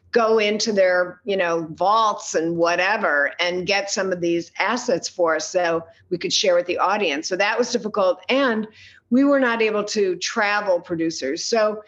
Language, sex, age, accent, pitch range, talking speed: English, female, 50-69, American, 185-235 Hz, 180 wpm